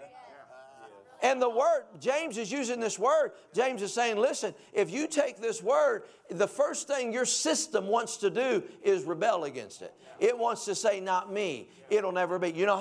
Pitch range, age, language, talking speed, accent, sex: 165-220 Hz, 50-69, English, 185 wpm, American, male